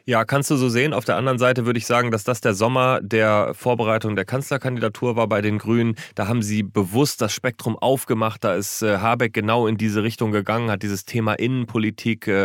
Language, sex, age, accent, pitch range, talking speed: German, male, 30-49, German, 105-130 Hz, 205 wpm